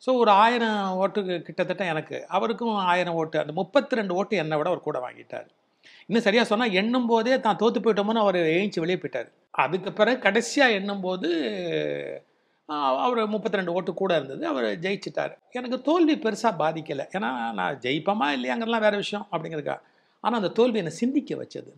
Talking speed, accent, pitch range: 155 wpm, native, 170-230 Hz